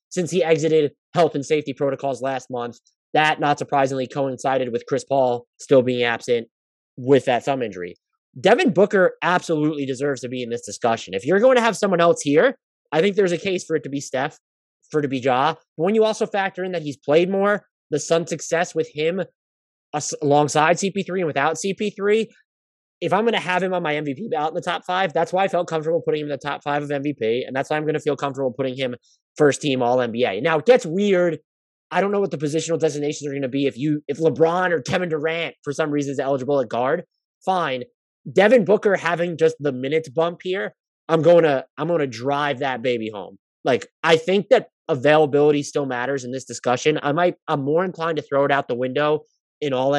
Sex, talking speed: male, 225 wpm